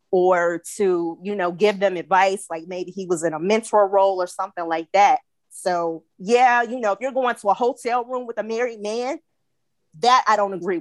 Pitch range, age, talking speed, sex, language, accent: 175-210 Hz, 20-39, 210 wpm, female, English, American